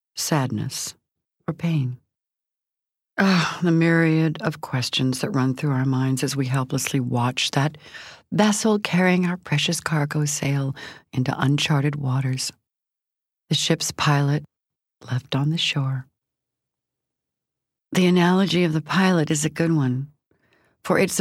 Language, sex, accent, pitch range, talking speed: English, female, American, 135-170 Hz, 125 wpm